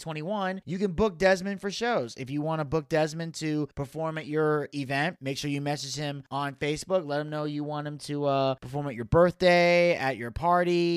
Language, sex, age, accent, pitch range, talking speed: English, male, 30-49, American, 140-195 Hz, 230 wpm